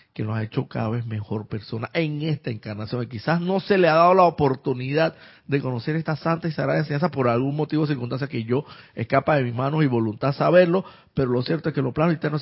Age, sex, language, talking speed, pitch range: 50-69, male, Spanish, 235 wpm, 110-150 Hz